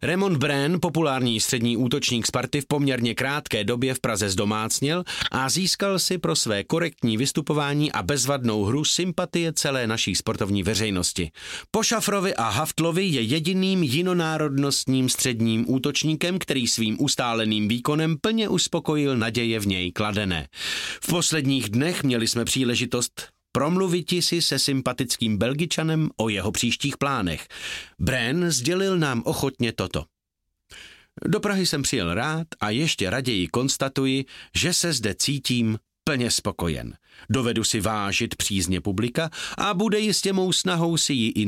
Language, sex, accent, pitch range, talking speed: Czech, male, native, 110-155 Hz, 135 wpm